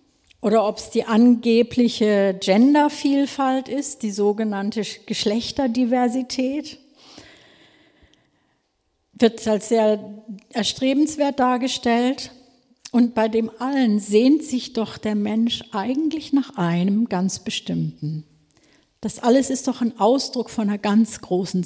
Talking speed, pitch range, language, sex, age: 110 wpm, 200-250 Hz, German, female, 50-69